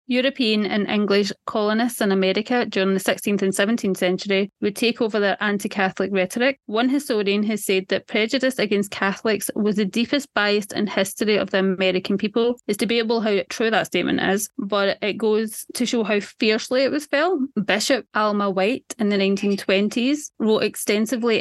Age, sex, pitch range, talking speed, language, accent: 20-39, female, 190-230 Hz, 170 wpm, English, British